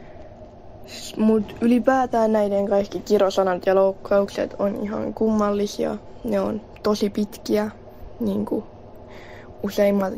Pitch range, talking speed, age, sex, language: 190-215 Hz, 95 wpm, 20-39, female, Finnish